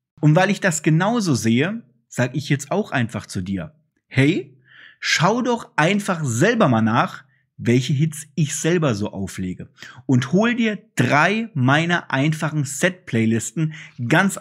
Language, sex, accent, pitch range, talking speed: German, male, German, 120-175 Hz, 140 wpm